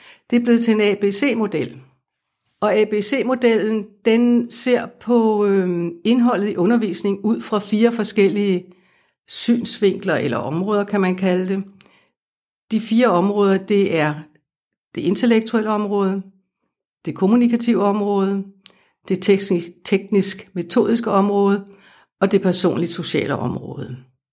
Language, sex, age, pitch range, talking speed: Danish, female, 60-79, 170-215 Hz, 110 wpm